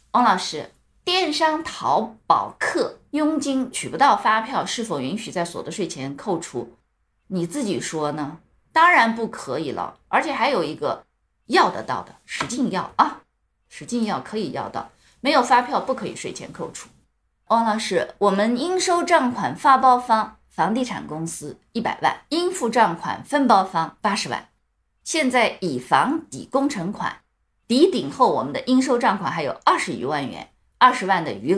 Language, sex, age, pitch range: Chinese, female, 20-39, 190-265 Hz